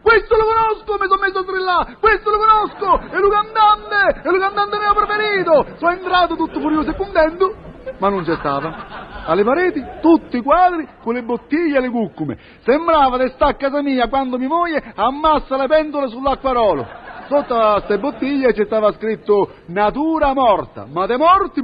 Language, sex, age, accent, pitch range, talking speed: Italian, male, 40-59, native, 205-295 Hz, 175 wpm